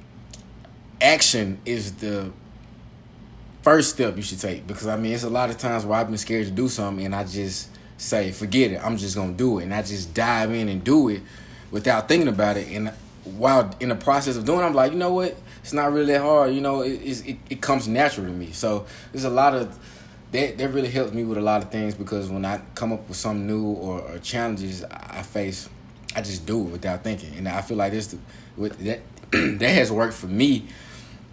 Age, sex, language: 20-39, male, English